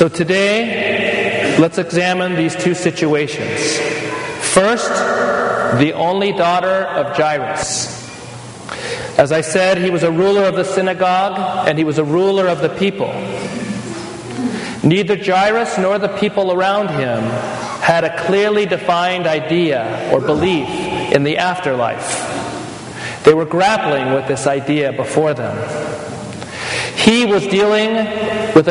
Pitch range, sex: 155-195 Hz, male